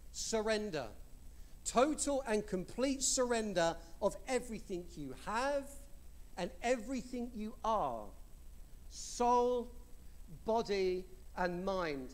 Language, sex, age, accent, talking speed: English, male, 50-69, British, 85 wpm